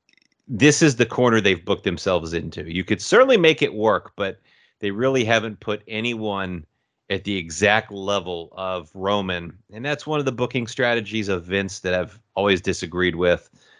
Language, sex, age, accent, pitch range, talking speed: English, male, 30-49, American, 95-115 Hz, 175 wpm